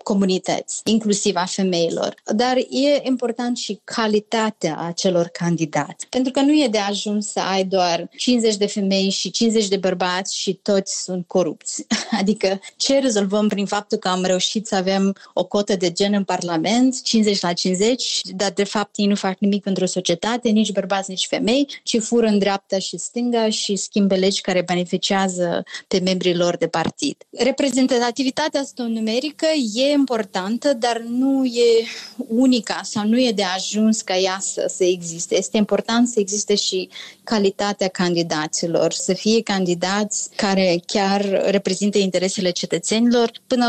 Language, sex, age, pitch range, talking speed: Romanian, female, 20-39, 190-225 Hz, 155 wpm